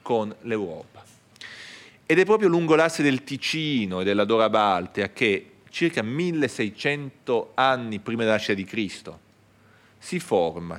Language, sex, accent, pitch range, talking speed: Italian, male, native, 105-145 Hz, 135 wpm